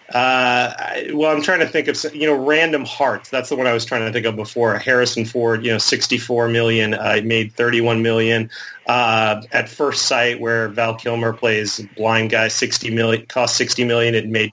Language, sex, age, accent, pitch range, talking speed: English, male, 30-49, American, 115-145 Hz, 205 wpm